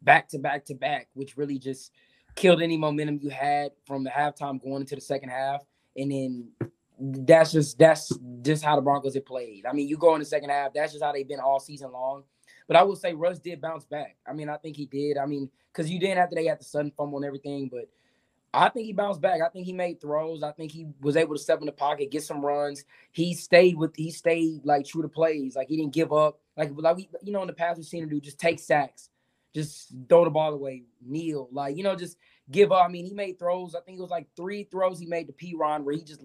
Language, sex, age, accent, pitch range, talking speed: English, male, 20-39, American, 140-170 Hz, 260 wpm